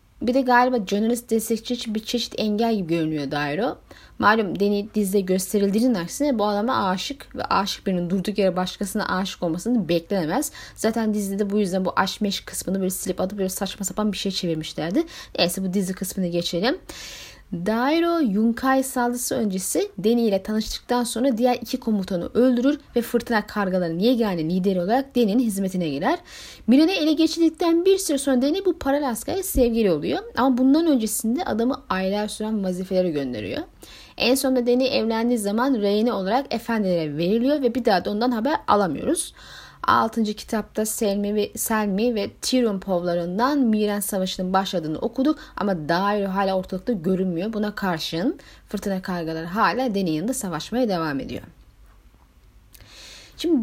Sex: female